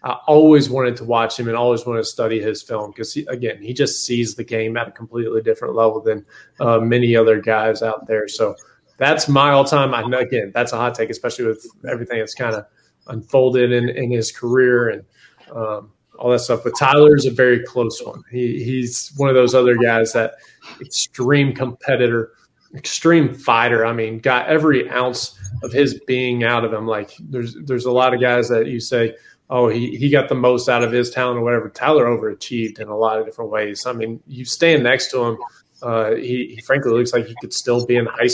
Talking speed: 220 wpm